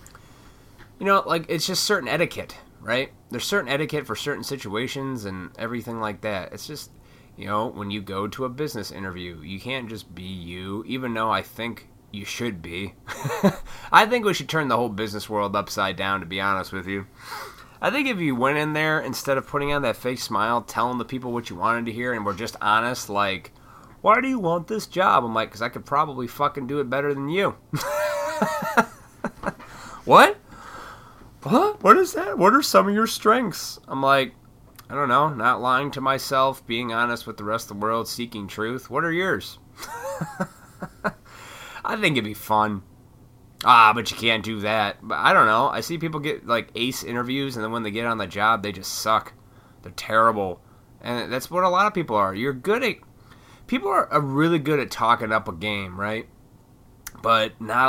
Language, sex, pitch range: English, male, 105-145 Hz